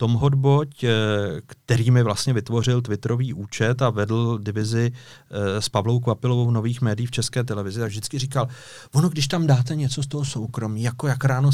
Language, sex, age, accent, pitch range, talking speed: Czech, male, 40-59, native, 110-135 Hz, 175 wpm